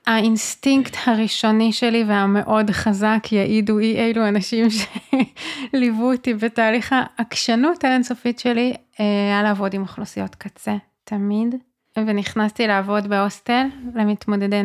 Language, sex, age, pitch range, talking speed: Hebrew, female, 20-39, 210-245 Hz, 100 wpm